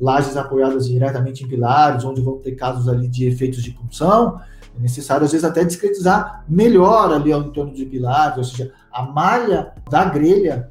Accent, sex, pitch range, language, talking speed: Brazilian, male, 135-190 Hz, Portuguese, 180 wpm